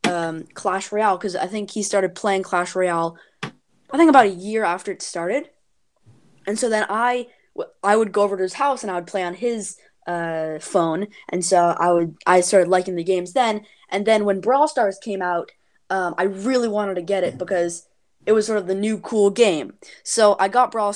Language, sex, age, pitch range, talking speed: English, female, 20-39, 185-230 Hz, 215 wpm